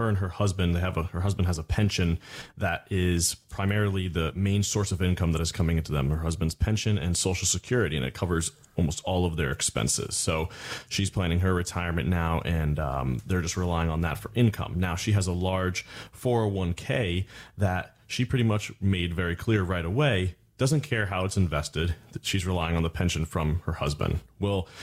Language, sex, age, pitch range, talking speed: English, male, 30-49, 85-105 Hz, 205 wpm